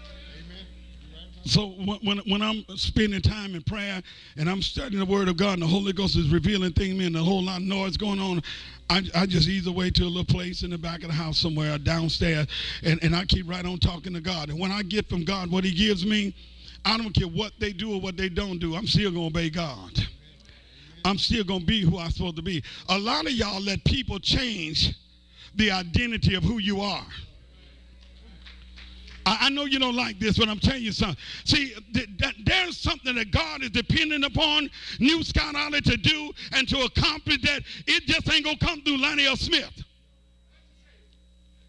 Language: English